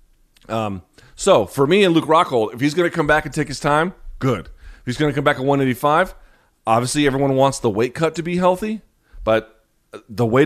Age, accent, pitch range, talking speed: 30-49, American, 100-130 Hz, 220 wpm